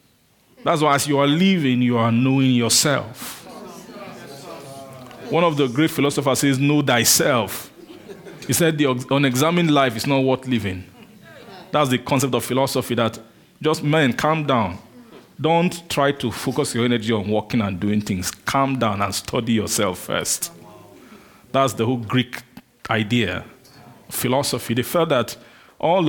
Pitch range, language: 115-150 Hz, English